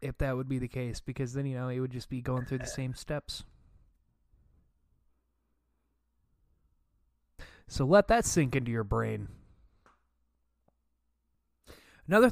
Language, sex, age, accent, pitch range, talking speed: English, male, 20-39, American, 100-155 Hz, 130 wpm